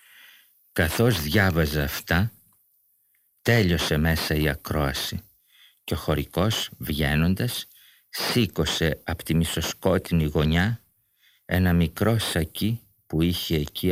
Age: 50-69